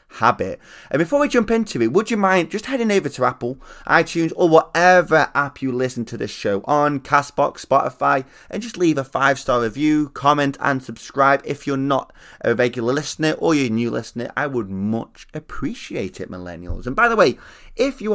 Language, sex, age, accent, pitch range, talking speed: English, male, 20-39, British, 115-155 Hz, 190 wpm